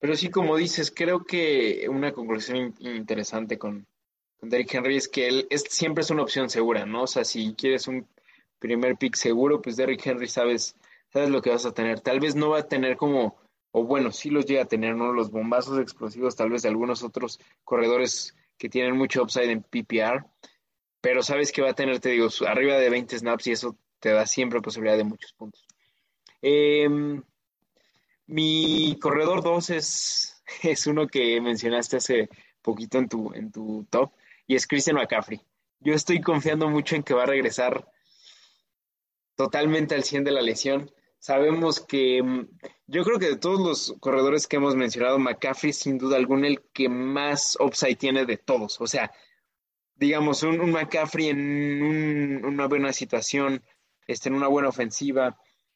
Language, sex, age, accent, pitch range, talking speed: Spanish, male, 20-39, Mexican, 120-150 Hz, 180 wpm